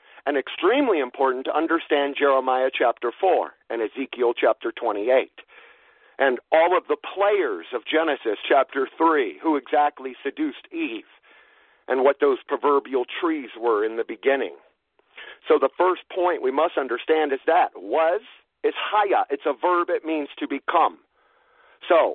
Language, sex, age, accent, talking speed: English, male, 50-69, American, 145 wpm